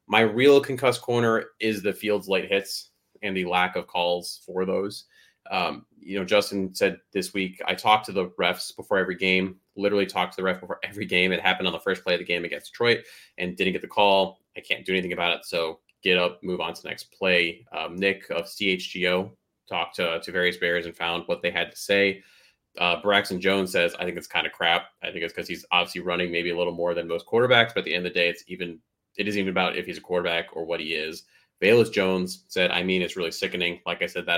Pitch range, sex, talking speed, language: 90-105 Hz, male, 250 wpm, English